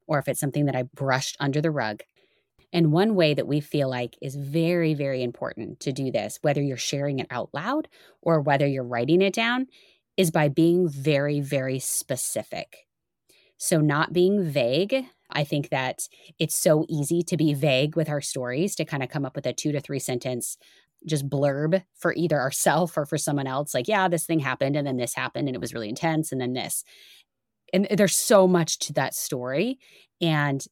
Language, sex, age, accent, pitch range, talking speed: English, female, 20-39, American, 135-170 Hz, 200 wpm